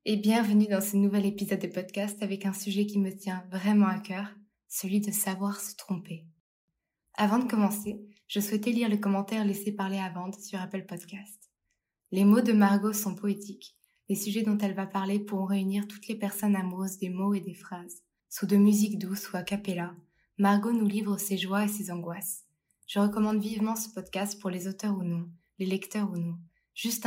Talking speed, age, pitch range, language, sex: 195 wpm, 20-39, 185-210 Hz, French, female